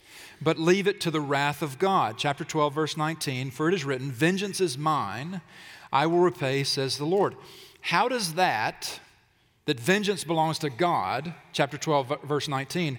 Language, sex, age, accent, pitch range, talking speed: English, male, 40-59, American, 140-180 Hz, 170 wpm